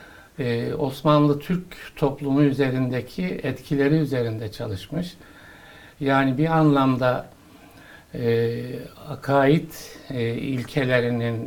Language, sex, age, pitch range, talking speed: Turkish, male, 60-79, 125-150 Hz, 75 wpm